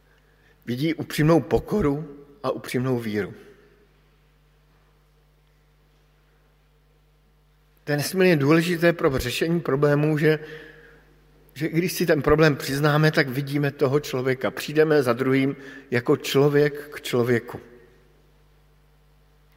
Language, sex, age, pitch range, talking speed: Slovak, male, 50-69, 135-155 Hz, 100 wpm